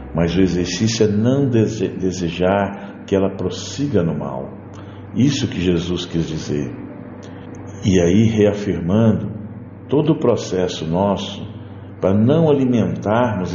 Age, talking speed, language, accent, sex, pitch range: 60-79, 115 wpm, Portuguese, Brazilian, male, 85-110 Hz